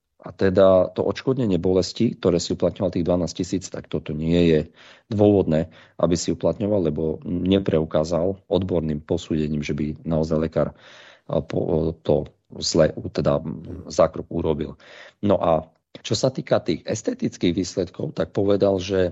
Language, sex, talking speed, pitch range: Slovak, male, 135 wpm, 80-95 Hz